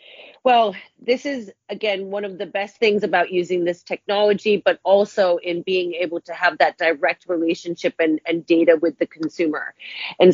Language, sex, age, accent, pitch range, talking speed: English, female, 30-49, American, 170-210 Hz, 175 wpm